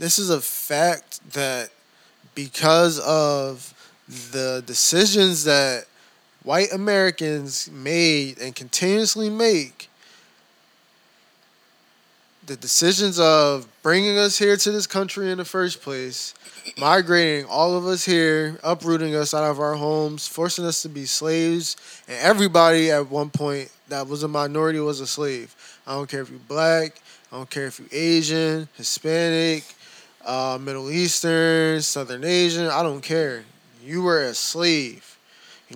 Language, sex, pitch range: English, male, 145-180 Hz